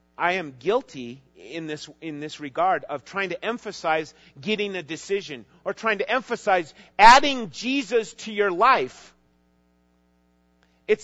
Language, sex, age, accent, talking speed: English, male, 40-59, American, 135 wpm